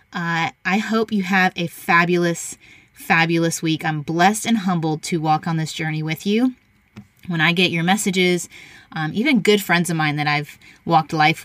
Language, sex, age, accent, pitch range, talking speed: English, female, 20-39, American, 155-185 Hz, 185 wpm